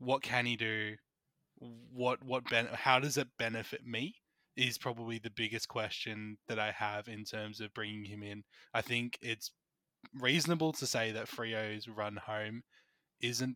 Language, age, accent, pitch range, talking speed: English, 20-39, Australian, 110-125 Hz, 165 wpm